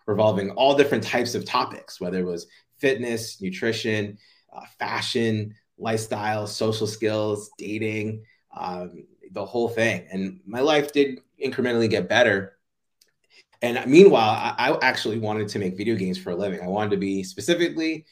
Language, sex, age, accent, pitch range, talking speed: English, male, 30-49, American, 95-120 Hz, 150 wpm